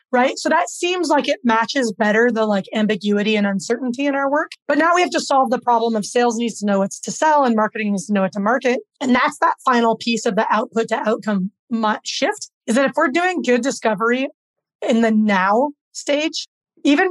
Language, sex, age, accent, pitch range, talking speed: English, female, 30-49, American, 220-290 Hz, 220 wpm